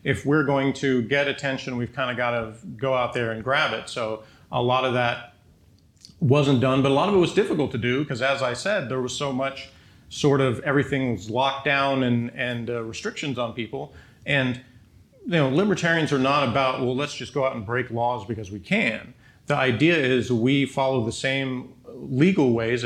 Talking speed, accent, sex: 205 wpm, American, male